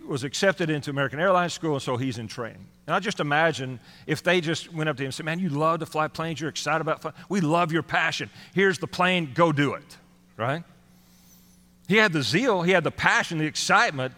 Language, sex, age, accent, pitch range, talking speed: English, male, 40-59, American, 120-175 Hz, 235 wpm